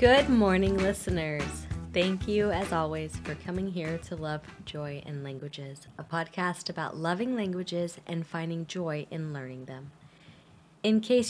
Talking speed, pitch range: 150 wpm, 155-195 Hz